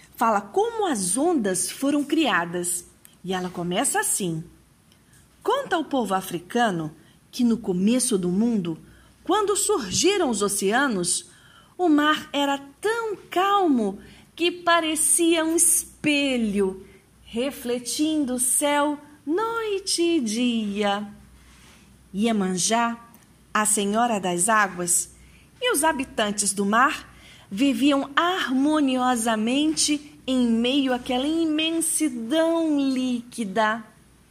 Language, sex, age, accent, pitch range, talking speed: Portuguese, female, 40-59, Brazilian, 205-305 Hz, 95 wpm